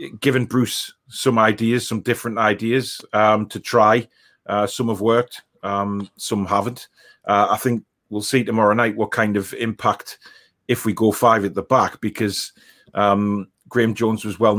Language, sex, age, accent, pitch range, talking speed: English, male, 30-49, British, 105-120 Hz, 170 wpm